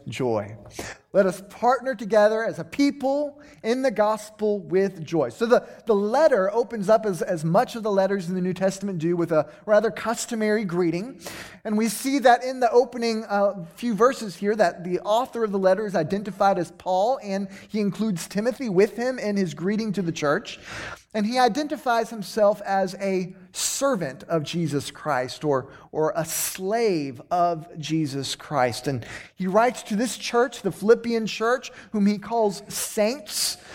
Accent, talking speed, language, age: American, 175 wpm, English, 20-39